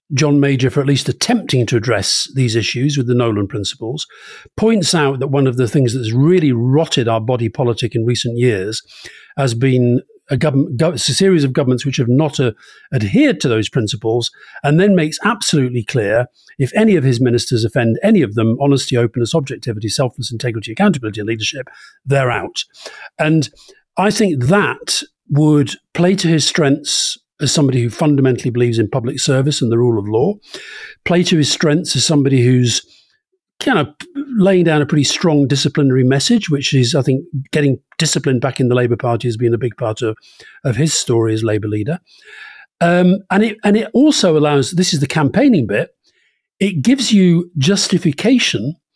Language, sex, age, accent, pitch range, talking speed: English, male, 50-69, British, 125-175 Hz, 180 wpm